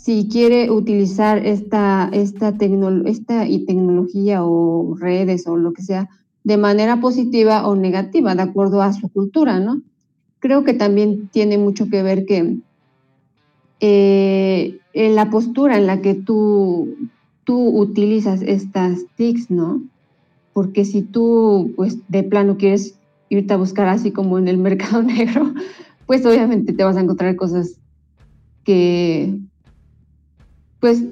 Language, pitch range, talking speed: Spanish, 185-215 Hz, 140 wpm